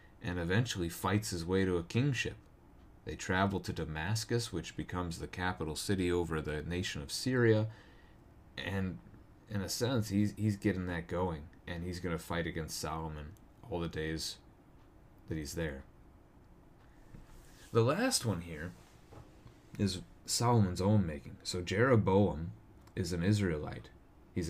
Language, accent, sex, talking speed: English, American, male, 140 wpm